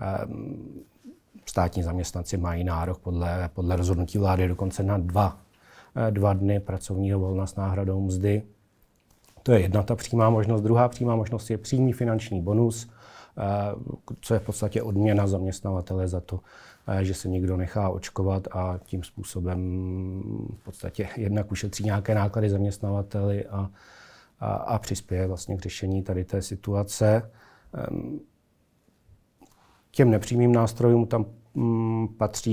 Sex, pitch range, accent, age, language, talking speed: male, 95-110 Hz, native, 40-59, Czech, 125 wpm